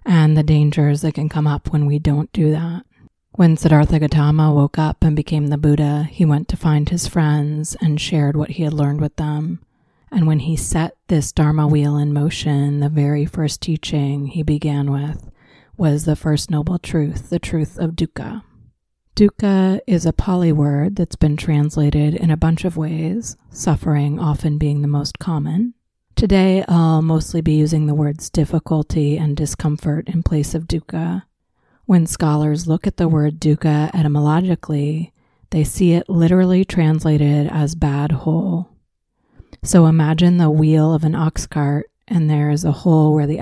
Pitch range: 150-165 Hz